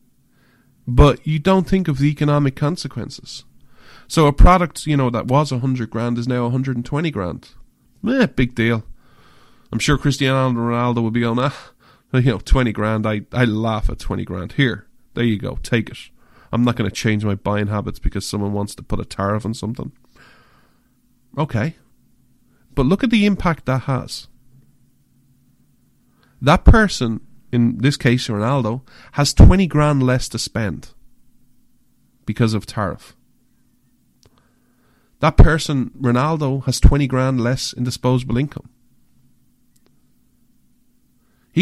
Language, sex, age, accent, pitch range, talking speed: English, male, 30-49, Irish, 115-140 Hz, 145 wpm